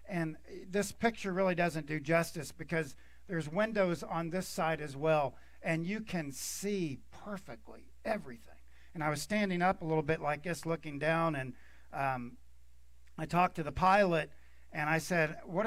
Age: 50-69